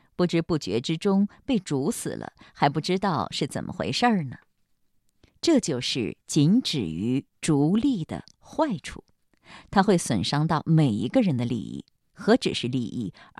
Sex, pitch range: female, 150-225 Hz